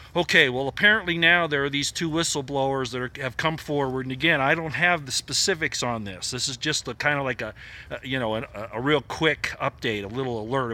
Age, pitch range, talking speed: 50-69, 115-145 Hz, 235 wpm